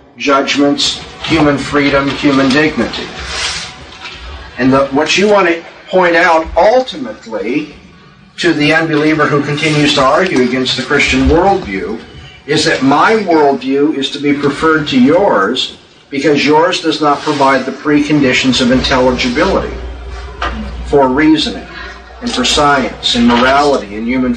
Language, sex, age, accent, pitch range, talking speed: English, male, 50-69, American, 120-155 Hz, 130 wpm